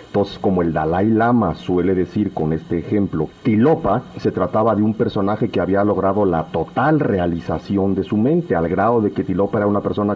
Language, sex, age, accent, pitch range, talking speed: English, male, 50-69, Mexican, 85-110 Hz, 195 wpm